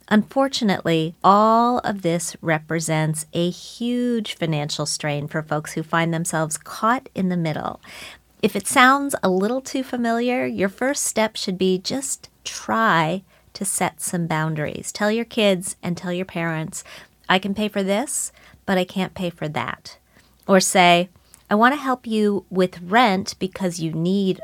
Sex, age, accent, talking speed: female, 30-49, American, 160 wpm